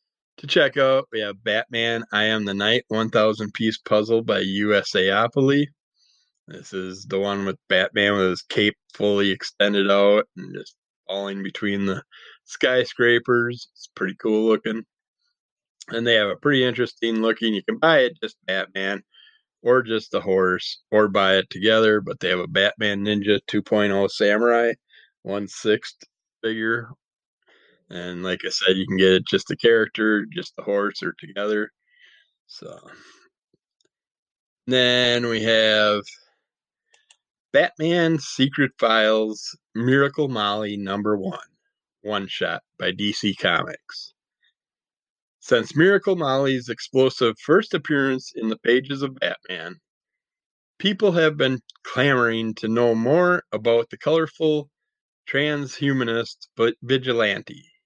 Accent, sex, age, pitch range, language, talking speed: American, male, 20-39, 100-130 Hz, English, 125 wpm